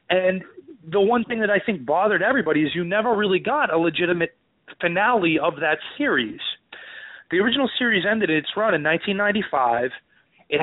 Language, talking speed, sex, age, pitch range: English, 165 wpm, male, 30-49, 140-180 Hz